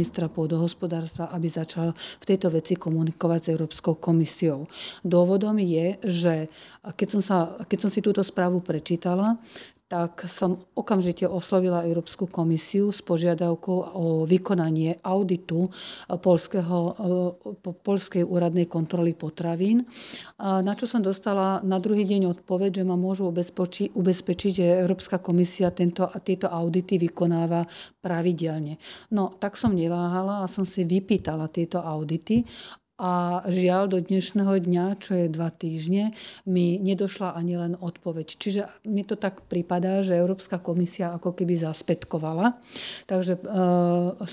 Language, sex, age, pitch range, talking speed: Slovak, female, 40-59, 170-190 Hz, 135 wpm